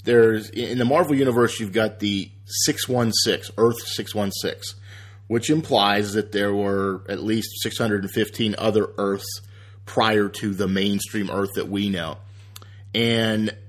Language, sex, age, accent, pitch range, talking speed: English, male, 30-49, American, 100-120 Hz, 130 wpm